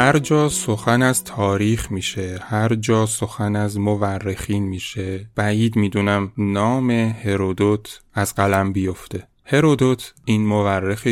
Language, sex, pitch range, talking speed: Persian, male, 100-115 Hz, 120 wpm